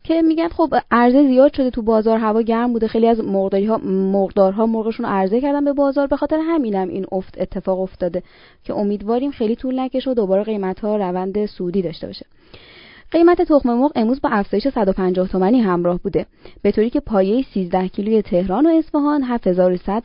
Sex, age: female, 20-39